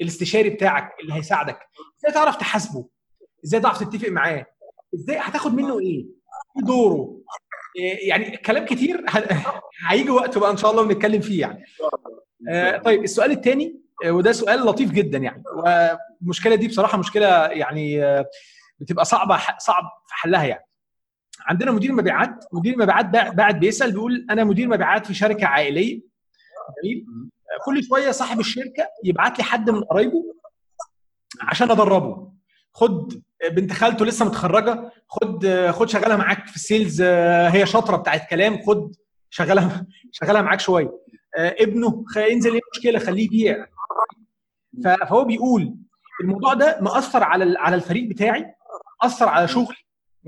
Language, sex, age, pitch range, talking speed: Arabic, male, 30-49, 190-240 Hz, 140 wpm